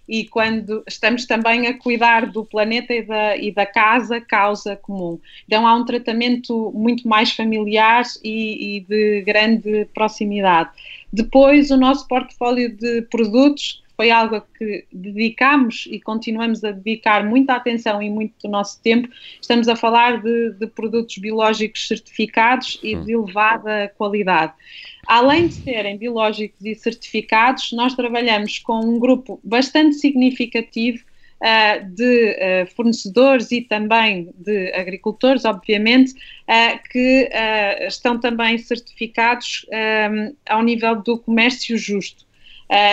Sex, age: female, 20-39